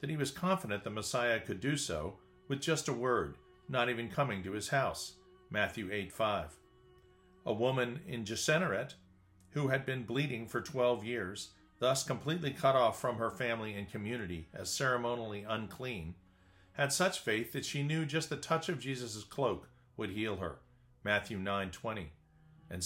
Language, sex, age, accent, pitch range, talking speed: English, male, 40-59, American, 105-140 Hz, 170 wpm